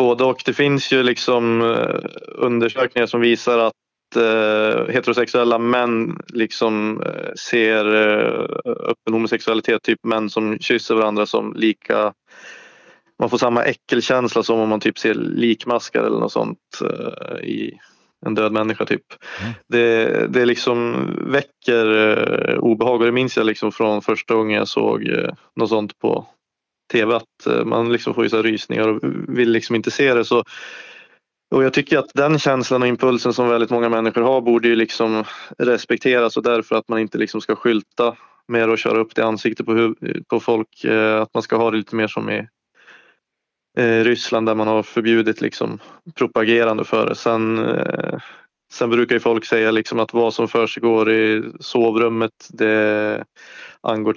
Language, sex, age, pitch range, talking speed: Swedish, male, 20-39, 110-120 Hz, 155 wpm